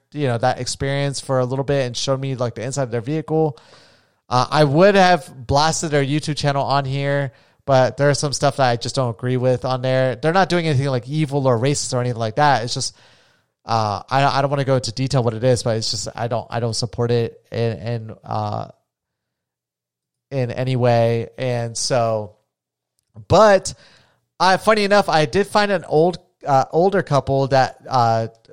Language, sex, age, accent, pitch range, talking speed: English, male, 30-49, American, 120-155 Hz, 205 wpm